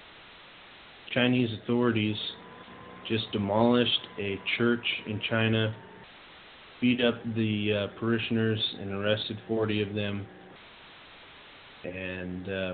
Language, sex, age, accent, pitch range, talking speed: English, male, 30-49, American, 95-110 Hz, 90 wpm